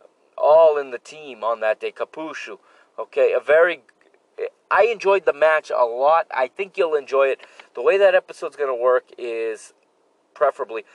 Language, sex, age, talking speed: English, male, 30-49, 170 wpm